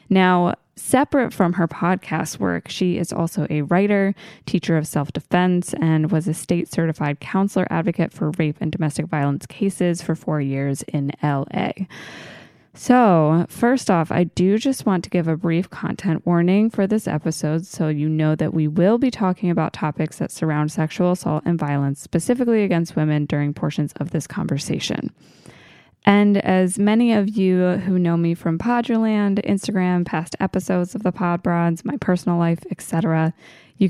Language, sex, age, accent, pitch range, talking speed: English, female, 20-39, American, 160-190 Hz, 165 wpm